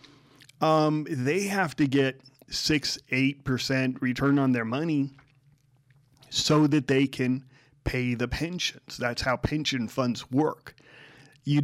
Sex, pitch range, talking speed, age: male, 125-145 Hz, 125 wpm, 30-49